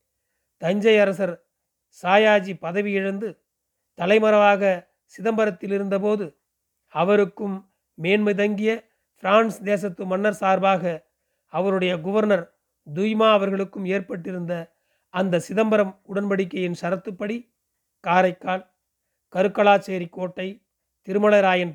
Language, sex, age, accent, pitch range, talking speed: Tamil, male, 40-59, native, 180-210 Hz, 75 wpm